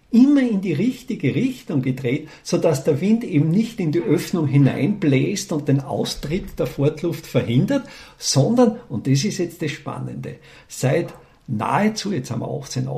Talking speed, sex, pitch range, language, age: 160 wpm, male, 135-210 Hz, German, 50-69